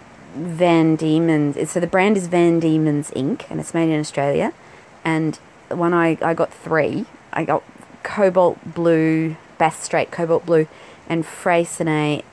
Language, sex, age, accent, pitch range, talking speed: English, female, 30-49, Australian, 160-185 Hz, 150 wpm